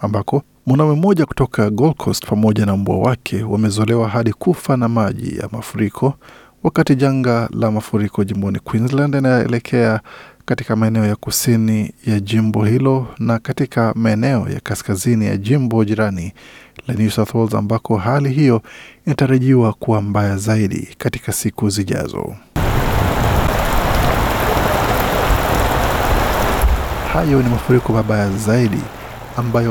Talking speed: 120 wpm